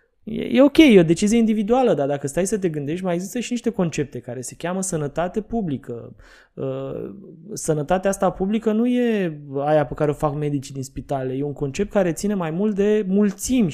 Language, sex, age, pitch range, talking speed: Romanian, male, 20-39, 145-205 Hz, 190 wpm